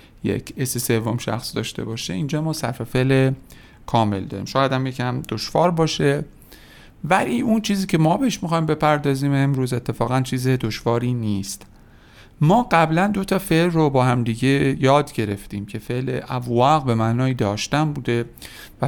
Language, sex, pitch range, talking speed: Persian, male, 120-155 Hz, 155 wpm